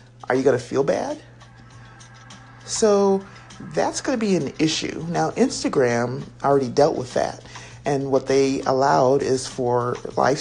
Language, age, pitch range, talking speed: English, 50-69, 120-180 Hz, 150 wpm